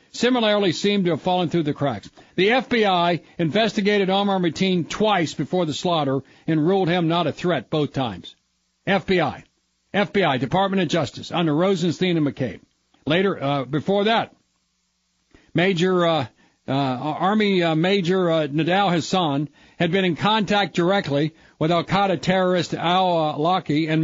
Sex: male